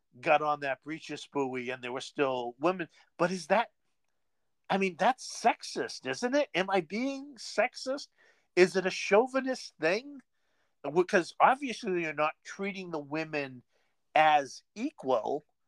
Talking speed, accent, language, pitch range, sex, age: 140 wpm, American, English, 145-215 Hz, male, 50-69